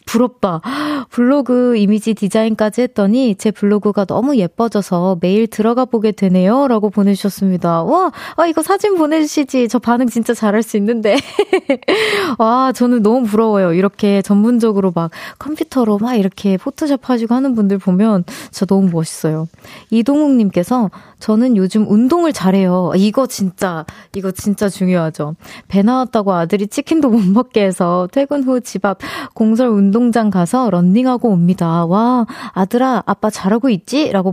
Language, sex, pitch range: Korean, female, 195-265 Hz